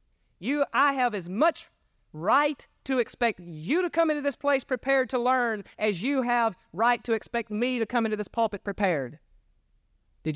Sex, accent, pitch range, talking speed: male, American, 145-245 Hz, 180 wpm